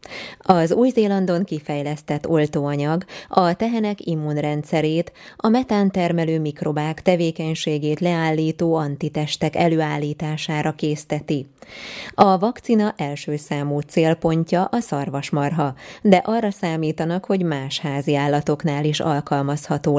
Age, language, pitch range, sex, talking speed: 20-39, Hungarian, 145-180 Hz, female, 95 wpm